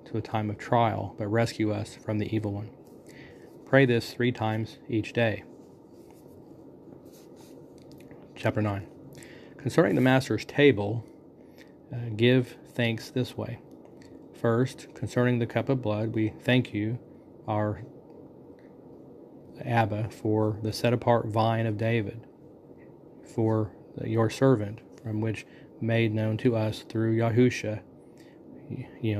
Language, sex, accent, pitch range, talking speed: English, male, American, 110-120 Hz, 120 wpm